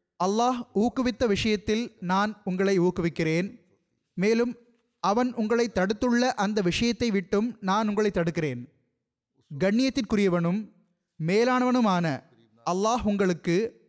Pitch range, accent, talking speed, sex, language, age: 170-230 Hz, native, 85 wpm, male, Tamil, 30-49